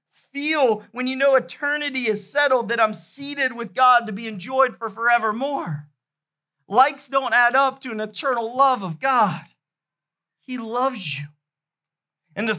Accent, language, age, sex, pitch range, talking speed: American, English, 40-59, male, 190-265 Hz, 155 wpm